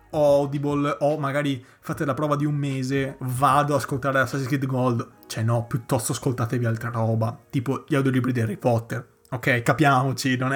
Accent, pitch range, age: native, 130-160 Hz, 30-49